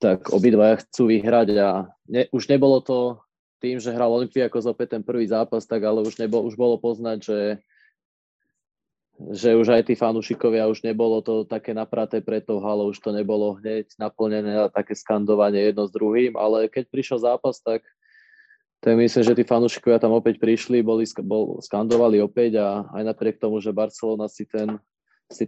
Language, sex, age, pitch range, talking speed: Slovak, male, 20-39, 105-115 Hz, 175 wpm